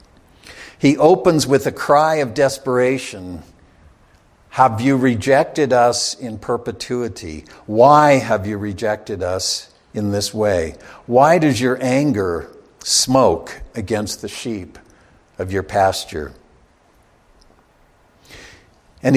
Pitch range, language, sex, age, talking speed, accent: 105-140 Hz, English, male, 60-79, 105 wpm, American